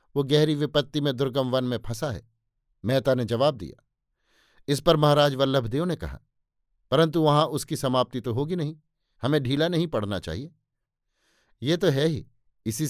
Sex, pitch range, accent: male, 125-155 Hz, native